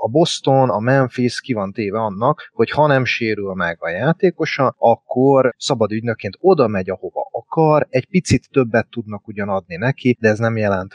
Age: 30-49